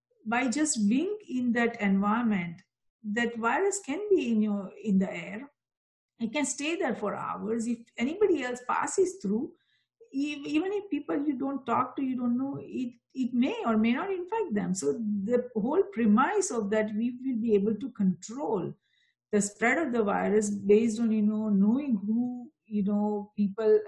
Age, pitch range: 50-69, 205-295 Hz